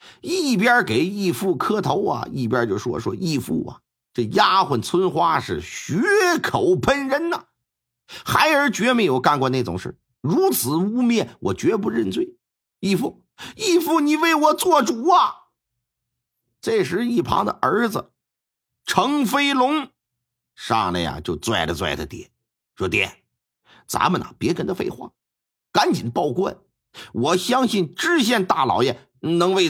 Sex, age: male, 50-69